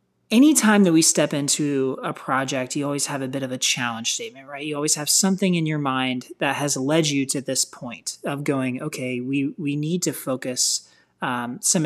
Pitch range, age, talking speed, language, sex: 130-175 Hz, 30-49, 205 wpm, English, male